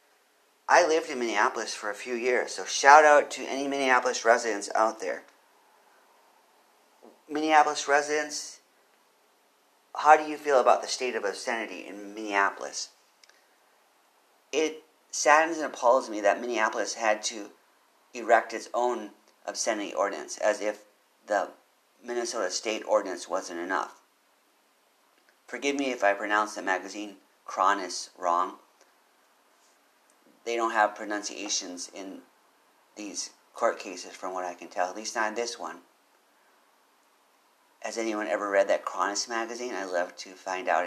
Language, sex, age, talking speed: English, male, 40-59, 135 wpm